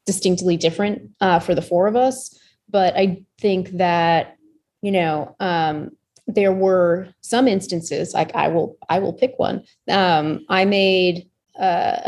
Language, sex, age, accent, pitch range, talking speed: English, female, 30-49, American, 170-210 Hz, 150 wpm